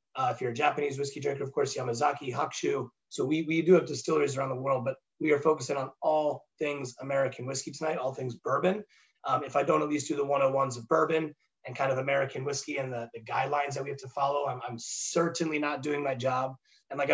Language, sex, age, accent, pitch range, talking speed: English, male, 30-49, American, 135-160 Hz, 235 wpm